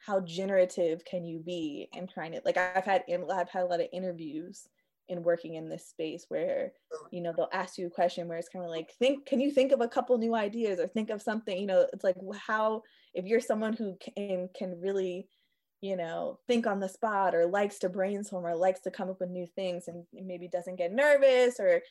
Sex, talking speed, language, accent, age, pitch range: female, 235 wpm, English, American, 20-39, 180-240 Hz